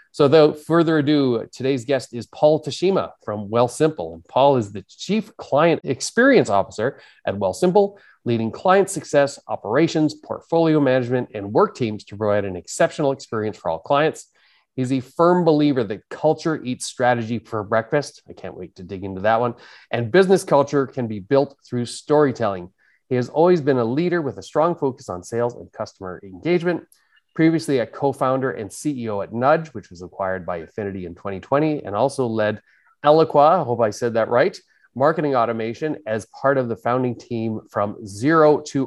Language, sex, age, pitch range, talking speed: English, male, 30-49, 110-150 Hz, 180 wpm